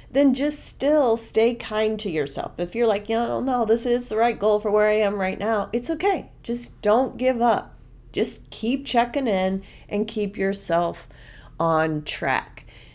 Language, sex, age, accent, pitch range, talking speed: English, female, 40-59, American, 175-220 Hz, 180 wpm